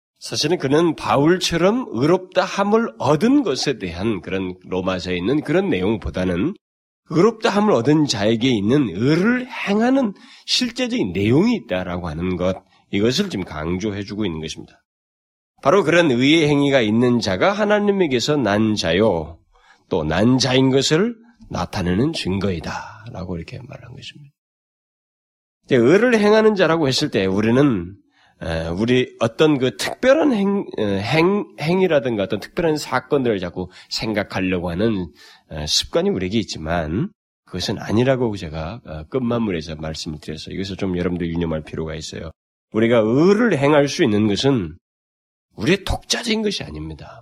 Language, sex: Korean, male